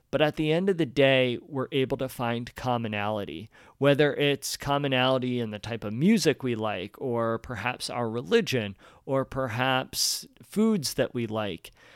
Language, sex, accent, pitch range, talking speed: English, male, American, 120-150 Hz, 160 wpm